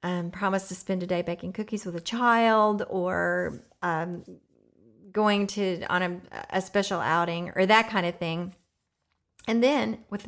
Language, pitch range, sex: English, 170-200 Hz, female